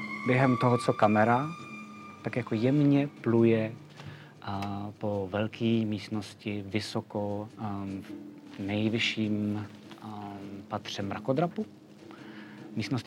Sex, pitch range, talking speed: male, 105-125 Hz, 90 wpm